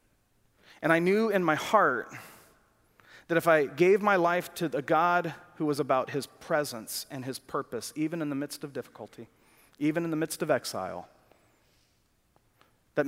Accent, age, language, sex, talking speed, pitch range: American, 30-49, English, male, 165 wpm, 120-155 Hz